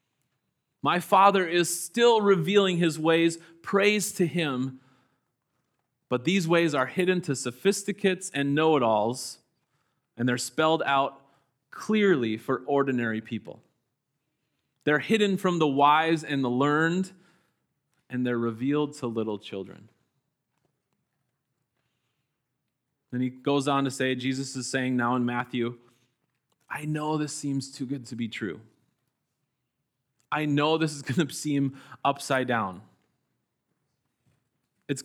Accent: American